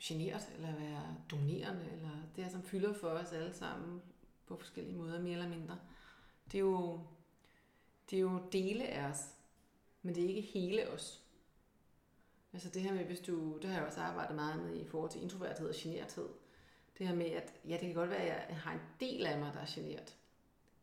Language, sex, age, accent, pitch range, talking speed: Danish, female, 30-49, native, 165-195 Hz, 205 wpm